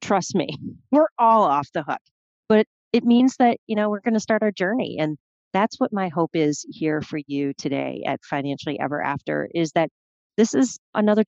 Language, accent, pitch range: English, American, 165-215 Hz